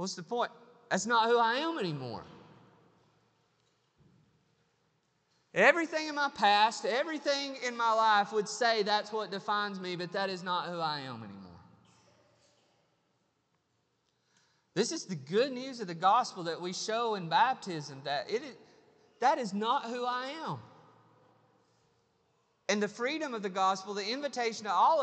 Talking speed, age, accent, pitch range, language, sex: 145 wpm, 30-49, American, 165-245 Hz, English, male